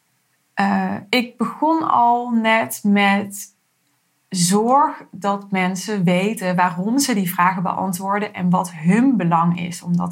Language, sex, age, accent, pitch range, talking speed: Dutch, female, 20-39, Dutch, 180-230 Hz, 130 wpm